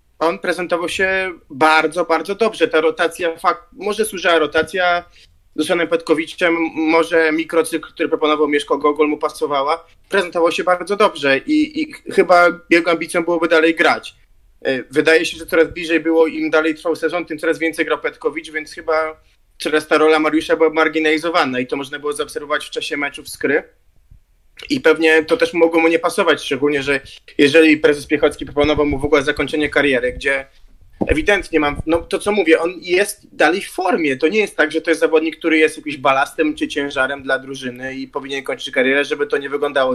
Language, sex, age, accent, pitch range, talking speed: Polish, male, 20-39, native, 145-170 Hz, 185 wpm